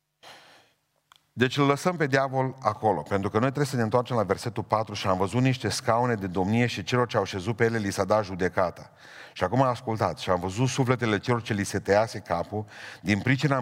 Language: Romanian